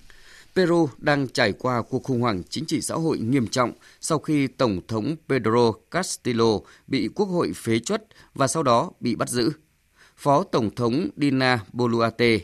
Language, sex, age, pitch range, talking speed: English, male, 20-39, 110-140 Hz, 170 wpm